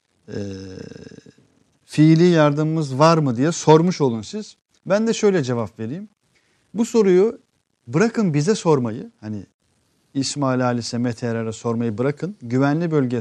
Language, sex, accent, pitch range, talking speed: Turkish, male, native, 120-180 Hz, 125 wpm